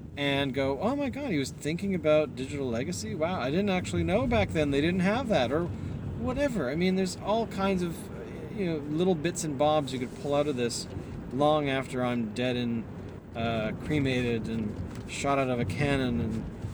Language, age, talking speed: English, 40-59, 200 wpm